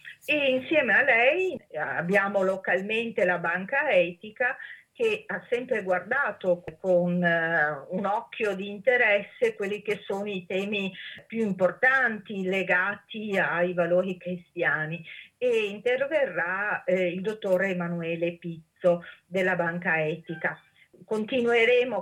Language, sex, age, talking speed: Italian, female, 40-59, 105 wpm